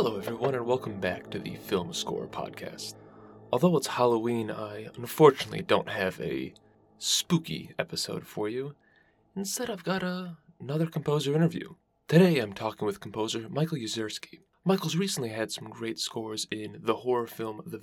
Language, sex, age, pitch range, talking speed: English, male, 20-39, 110-155 Hz, 155 wpm